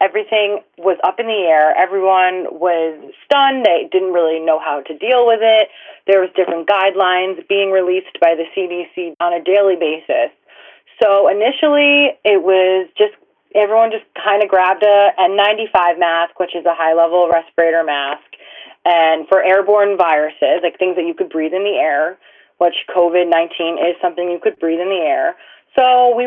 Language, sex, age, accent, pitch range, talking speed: English, female, 30-49, American, 165-205 Hz, 175 wpm